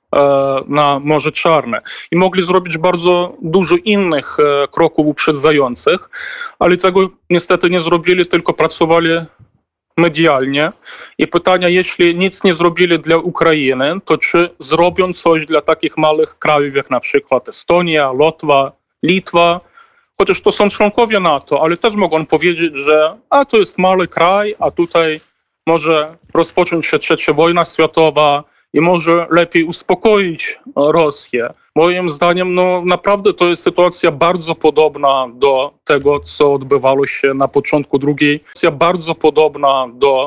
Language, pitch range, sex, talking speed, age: Polish, 150-175 Hz, male, 130 wpm, 30-49